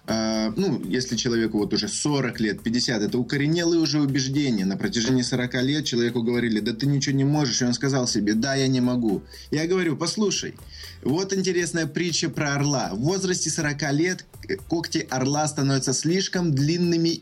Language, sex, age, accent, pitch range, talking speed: Russian, male, 20-39, native, 125-155 Hz, 165 wpm